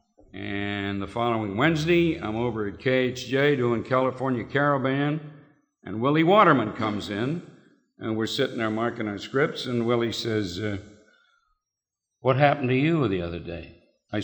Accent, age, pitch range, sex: American, 50-69, 120-180 Hz, male